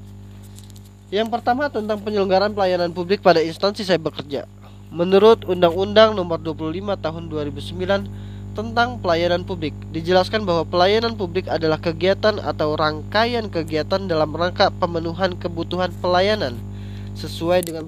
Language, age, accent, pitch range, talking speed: Indonesian, 20-39, native, 130-195 Hz, 120 wpm